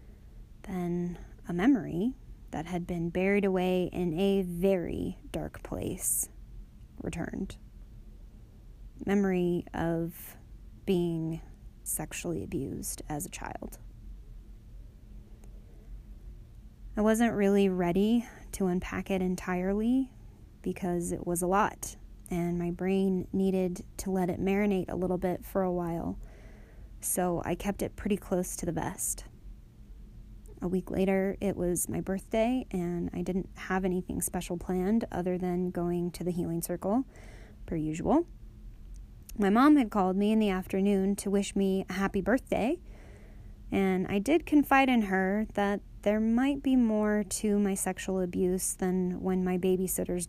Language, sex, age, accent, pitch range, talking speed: English, female, 20-39, American, 175-200 Hz, 135 wpm